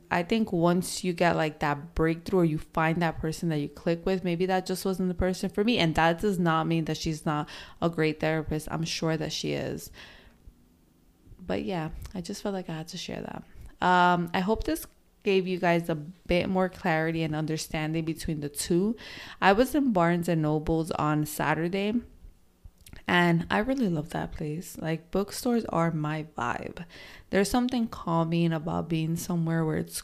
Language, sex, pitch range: English, female, 160-185 Hz